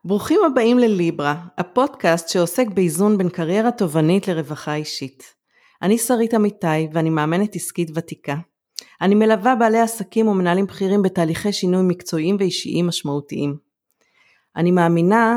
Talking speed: 120 wpm